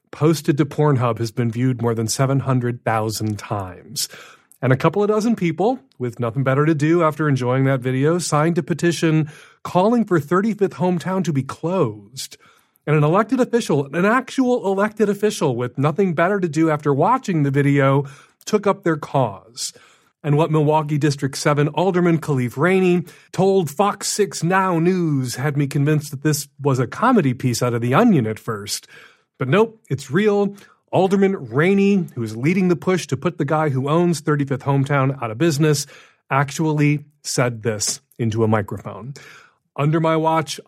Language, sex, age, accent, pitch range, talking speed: English, male, 40-59, American, 135-180 Hz, 170 wpm